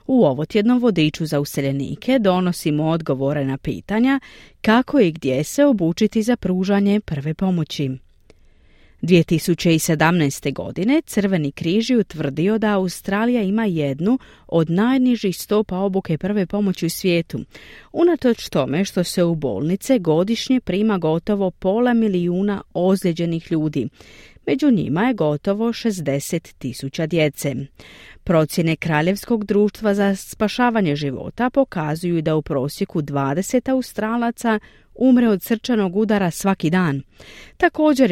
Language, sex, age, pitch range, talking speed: Croatian, female, 40-59, 160-230 Hz, 115 wpm